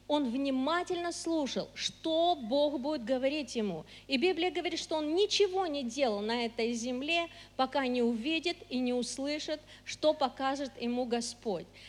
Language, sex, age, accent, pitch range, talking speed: Russian, female, 40-59, native, 225-310 Hz, 145 wpm